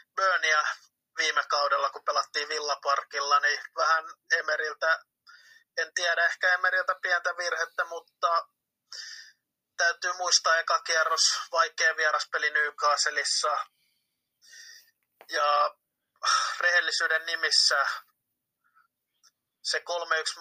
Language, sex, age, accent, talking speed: Finnish, male, 20-39, native, 80 wpm